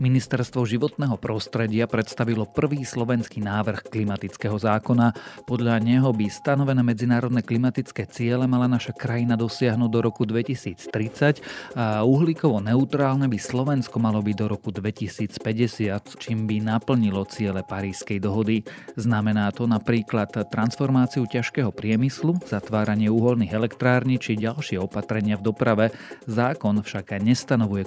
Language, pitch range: Slovak, 105-125 Hz